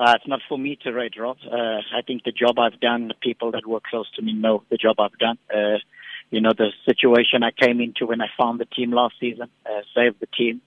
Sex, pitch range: male, 120-135 Hz